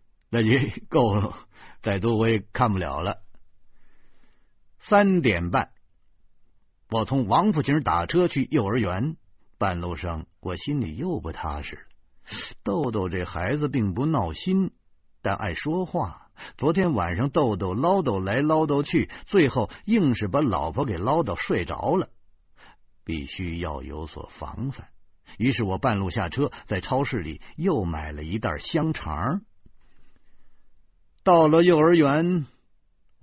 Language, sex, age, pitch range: Chinese, male, 50-69, 90-135 Hz